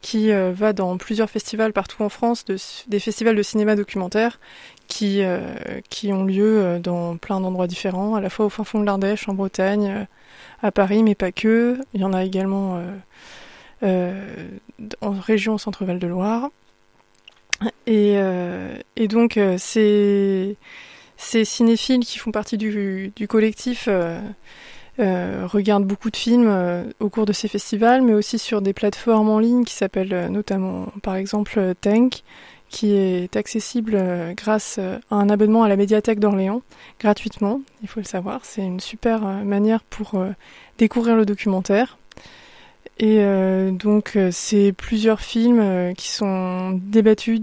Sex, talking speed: female, 165 wpm